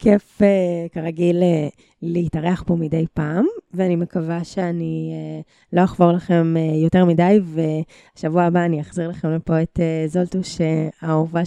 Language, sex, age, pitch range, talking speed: Hebrew, female, 20-39, 170-200 Hz, 120 wpm